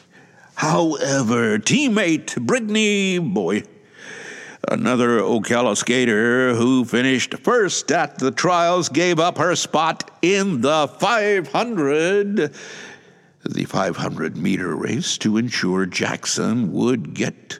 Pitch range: 130-205 Hz